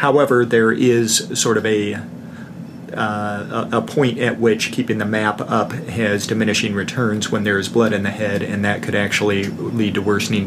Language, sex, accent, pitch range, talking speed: English, male, American, 105-125 Hz, 185 wpm